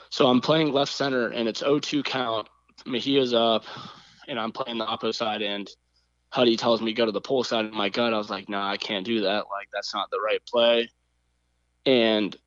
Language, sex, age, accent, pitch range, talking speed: English, male, 20-39, American, 110-130 Hz, 230 wpm